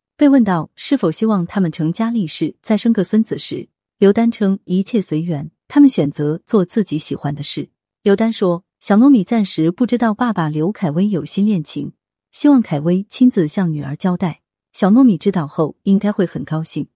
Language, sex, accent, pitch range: Chinese, female, native, 160-220 Hz